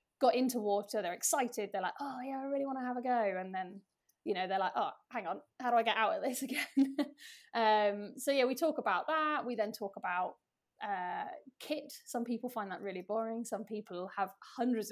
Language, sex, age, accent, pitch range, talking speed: English, female, 20-39, British, 205-245 Hz, 225 wpm